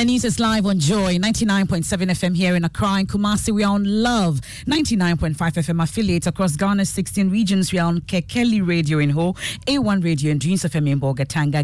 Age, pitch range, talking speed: 40-59, 160-210 Hz, 195 wpm